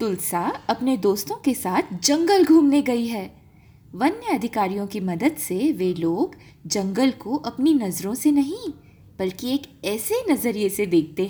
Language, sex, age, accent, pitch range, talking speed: Hindi, female, 20-39, native, 205-310 Hz, 150 wpm